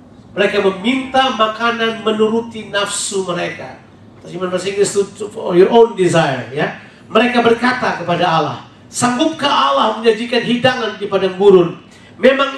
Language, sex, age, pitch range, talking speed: Indonesian, male, 40-59, 170-225 Hz, 115 wpm